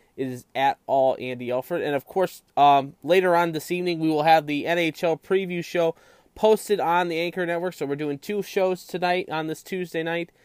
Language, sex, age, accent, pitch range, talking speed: English, male, 20-39, American, 135-175 Hz, 200 wpm